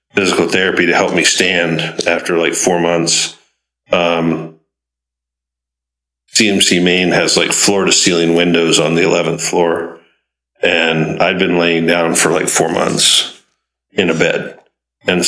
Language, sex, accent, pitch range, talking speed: English, male, American, 85-90 Hz, 140 wpm